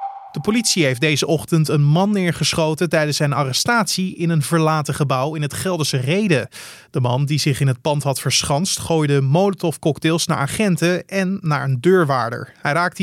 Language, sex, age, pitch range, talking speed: Dutch, male, 30-49, 140-180 Hz, 175 wpm